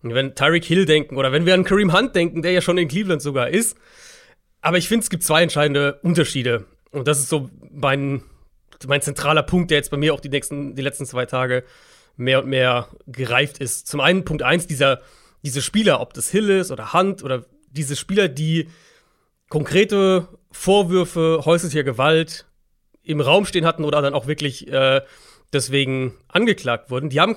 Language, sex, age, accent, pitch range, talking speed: German, male, 30-49, German, 140-175 Hz, 185 wpm